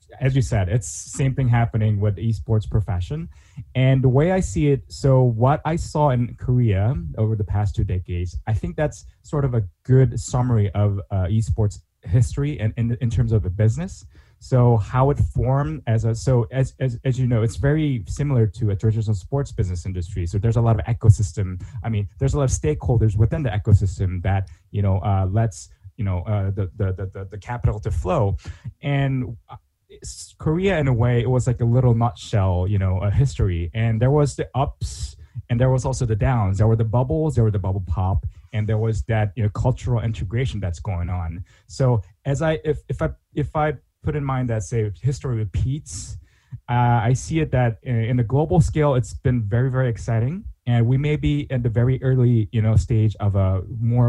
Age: 20-39